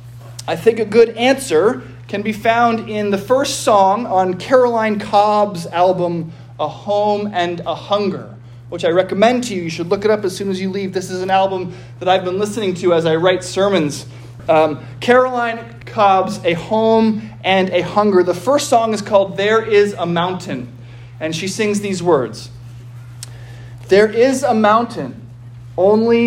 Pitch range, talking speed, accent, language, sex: 120-205 Hz, 175 wpm, American, English, male